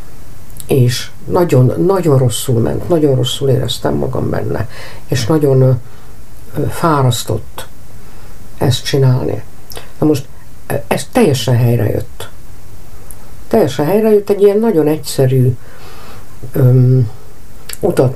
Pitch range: 115-150 Hz